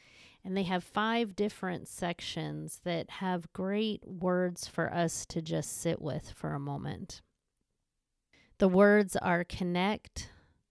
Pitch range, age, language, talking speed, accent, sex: 175-205 Hz, 30-49, English, 130 wpm, American, female